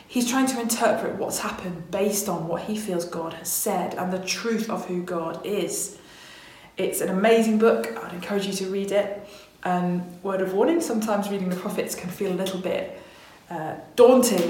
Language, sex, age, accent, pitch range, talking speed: English, female, 20-39, British, 180-205 Hz, 195 wpm